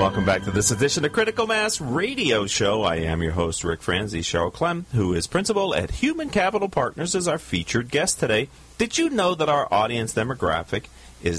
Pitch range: 90-150 Hz